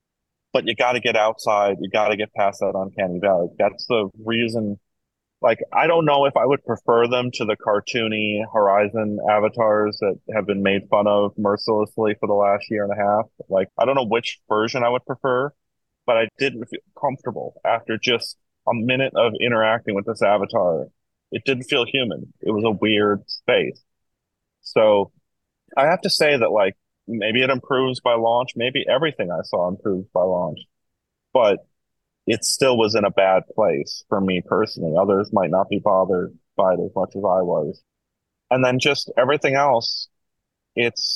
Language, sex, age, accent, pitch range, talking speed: English, male, 30-49, American, 105-125 Hz, 180 wpm